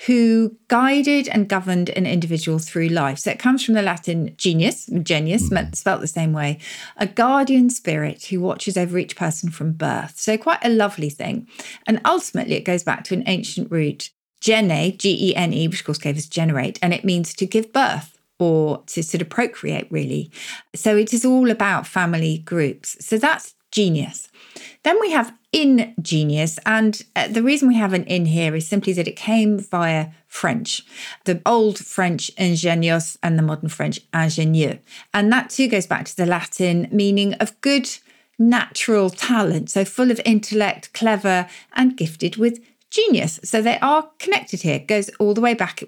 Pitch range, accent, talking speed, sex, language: 165-225 Hz, British, 180 wpm, female, English